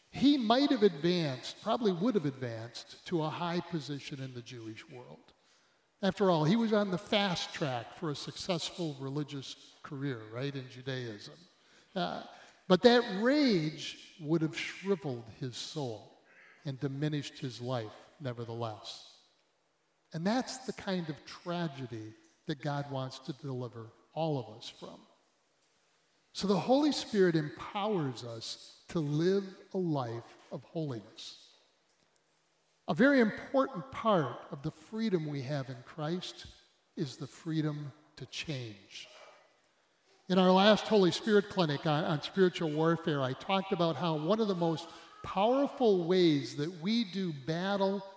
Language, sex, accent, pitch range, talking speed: English, male, American, 135-190 Hz, 140 wpm